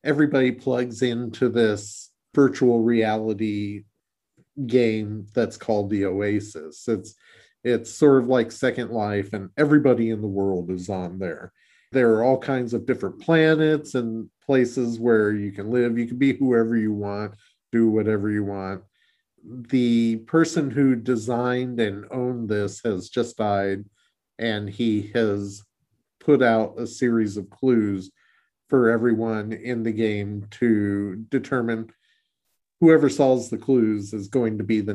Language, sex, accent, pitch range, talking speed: English, male, American, 100-120 Hz, 145 wpm